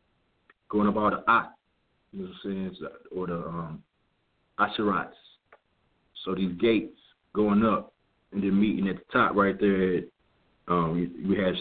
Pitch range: 90-105 Hz